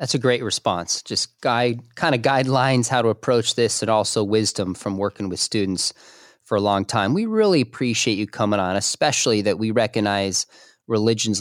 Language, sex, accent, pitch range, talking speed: English, male, American, 105-125 Hz, 185 wpm